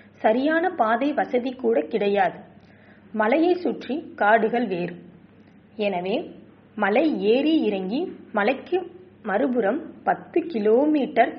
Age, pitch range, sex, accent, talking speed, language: 20-39, 210-295 Hz, female, native, 90 wpm, Tamil